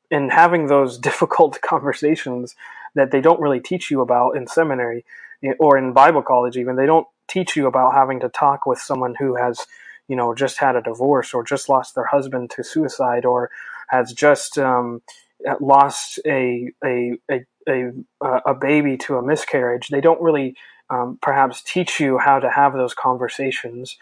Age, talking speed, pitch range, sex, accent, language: 20-39, 175 wpm, 125-145 Hz, male, American, English